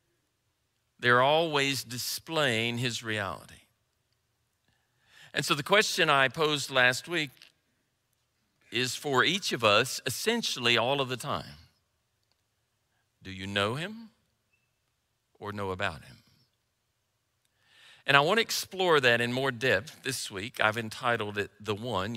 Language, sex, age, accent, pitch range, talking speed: English, male, 50-69, American, 110-145 Hz, 125 wpm